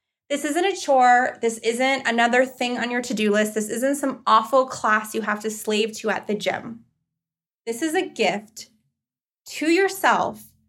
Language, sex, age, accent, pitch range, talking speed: English, female, 20-39, American, 210-295 Hz, 180 wpm